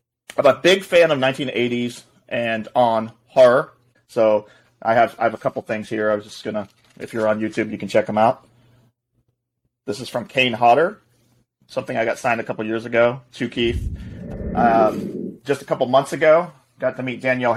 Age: 30-49